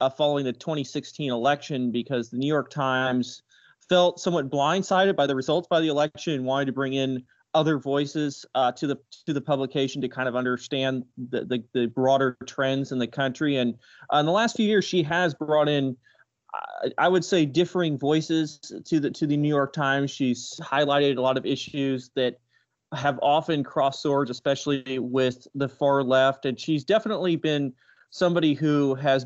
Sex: male